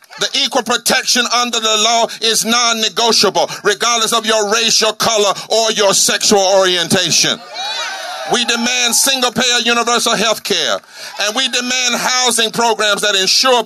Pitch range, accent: 200-235 Hz, American